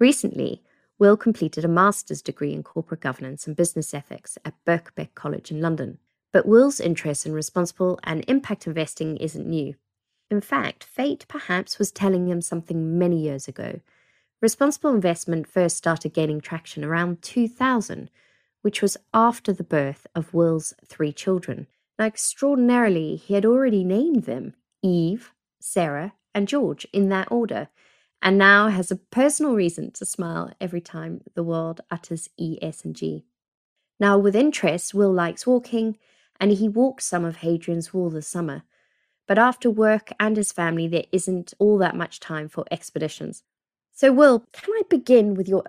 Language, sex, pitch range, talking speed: English, female, 165-215 Hz, 160 wpm